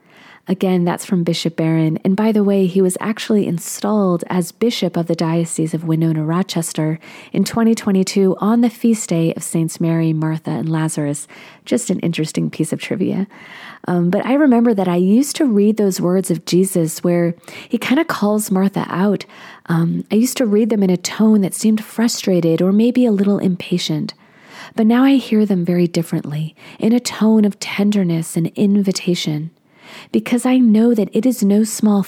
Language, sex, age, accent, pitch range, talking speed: English, female, 30-49, American, 175-220 Hz, 185 wpm